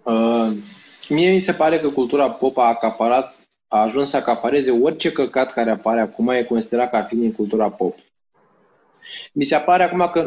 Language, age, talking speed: Romanian, 20-39, 180 wpm